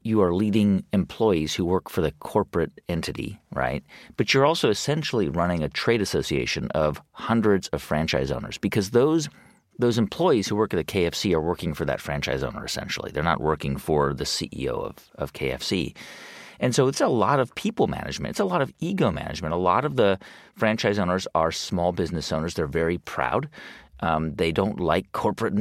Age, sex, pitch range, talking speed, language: 40-59, male, 80-115 Hz, 190 wpm, English